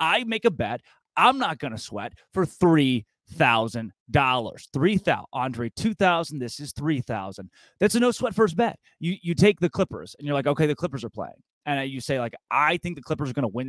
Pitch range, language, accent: 130-185 Hz, English, American